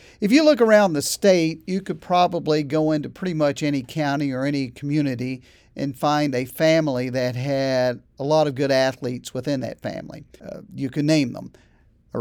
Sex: male